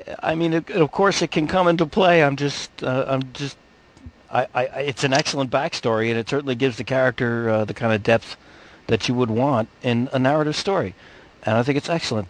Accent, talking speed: American, 220 wpm